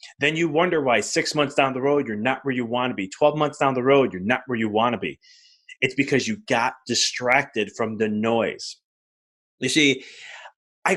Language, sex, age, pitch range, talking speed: English, male, 20-39, 105-145 Hz, 215 wpm